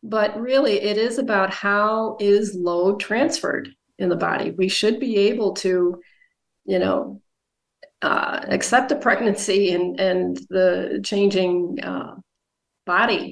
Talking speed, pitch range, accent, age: 130 wpm, 175-210 Hz, American, 40-59